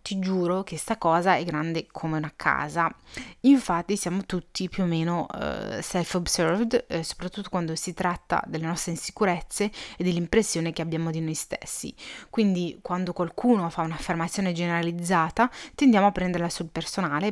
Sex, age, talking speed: female, 30-49, 150 wpm